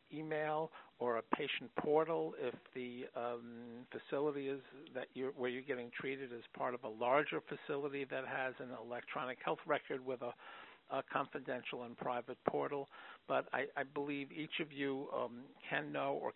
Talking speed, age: 170 wpm, 50-69